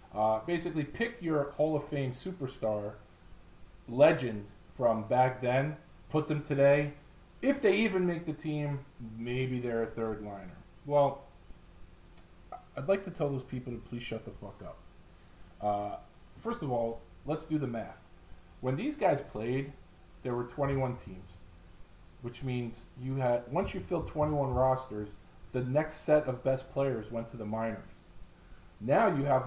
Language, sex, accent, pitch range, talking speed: English, male, American, 105-145 Hz, 155 wpm